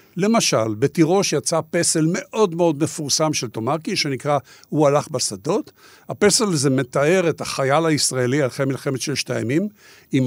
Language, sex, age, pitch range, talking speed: Hebrew, male, 60-79, 130-180 Hz, 140 wpm